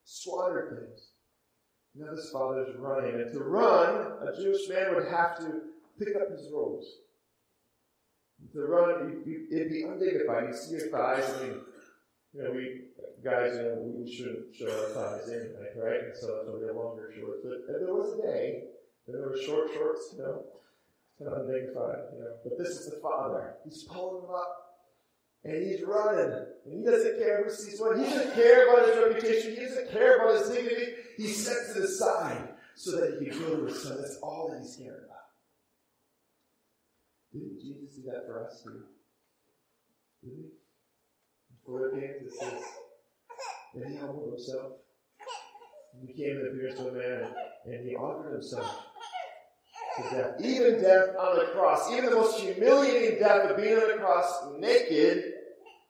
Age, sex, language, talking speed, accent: 40-59, male, English, 175 wpm, American